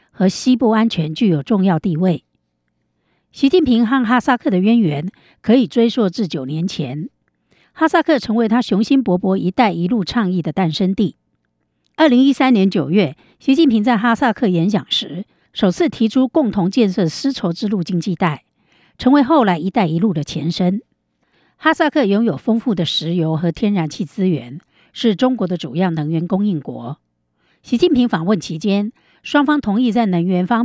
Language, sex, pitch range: Chinese, female, 175-240 Hz